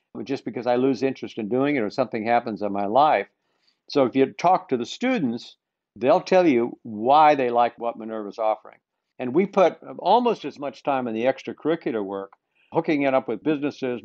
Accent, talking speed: American, 195 wpm